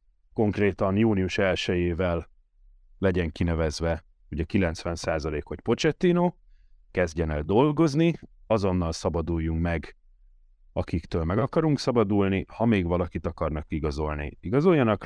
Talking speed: 100 wpm